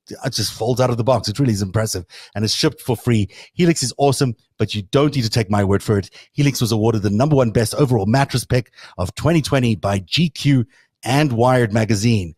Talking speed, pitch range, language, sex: 225 wpm, 105-140 Hz, English, male